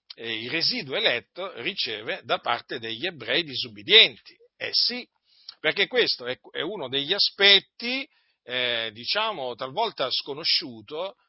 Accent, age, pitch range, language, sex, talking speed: native, 50-69, 120-195 Hz, Italian, male, 110 wpm